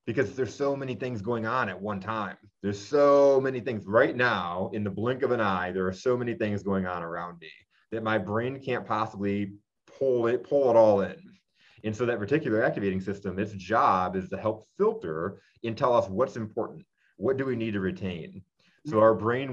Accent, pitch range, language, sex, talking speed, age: American, 95-115 Hz, English, male, 210 wpm, 30-49